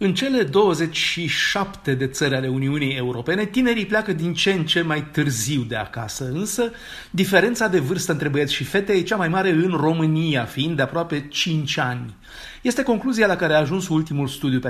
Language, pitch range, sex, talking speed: Romanian, 130-170 Hz, male, 190 wpm